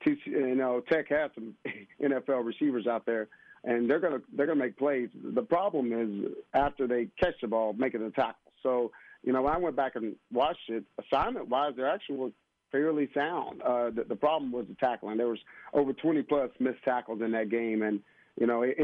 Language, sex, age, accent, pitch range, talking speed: English, male, 40-59, American, 125-145 Hz, 205 wpm